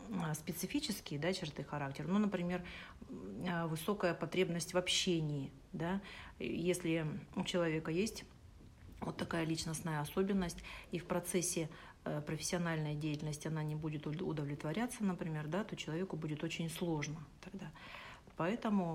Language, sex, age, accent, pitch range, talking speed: Russian, female, 40-59, native, 155-185 Hz, 110 wpm